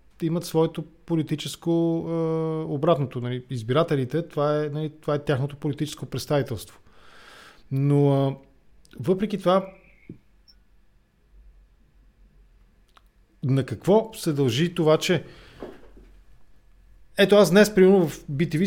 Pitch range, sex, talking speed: 130-165 Hz, male, 100 wpm